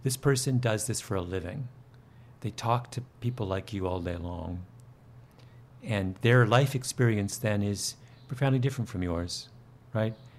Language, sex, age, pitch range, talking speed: English, male, 50-69, 120-145 Hz, 155 wpm